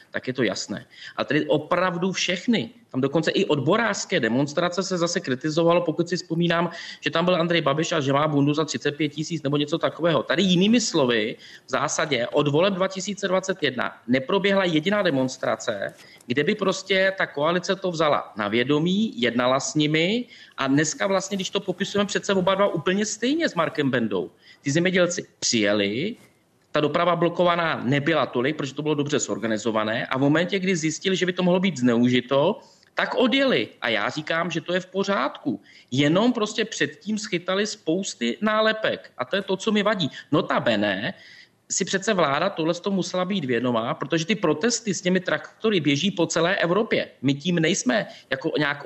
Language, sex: Czech, male